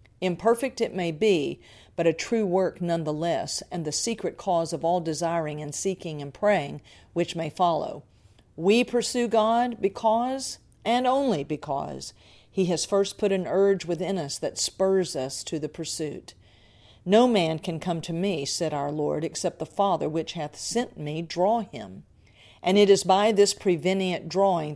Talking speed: 165 wpm